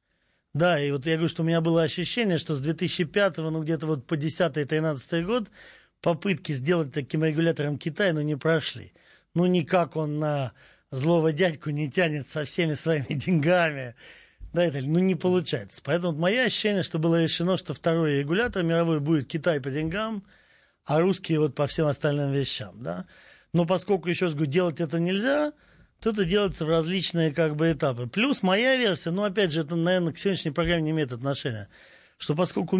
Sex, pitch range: male, 150-175 Hz